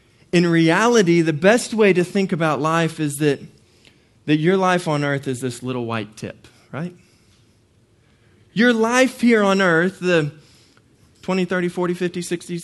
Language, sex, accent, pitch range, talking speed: English, male, American, 115-185 Hz, 155 wpm